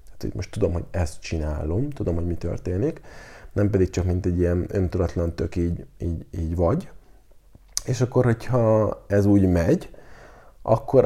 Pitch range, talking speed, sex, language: 90-120 Hz, 150 wpm, male, Hungarian